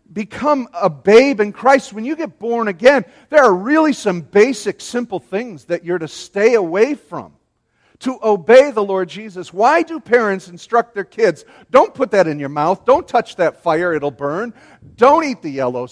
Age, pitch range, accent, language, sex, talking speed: 50-69, 195-265 Hz, American, English, male, 190 wpm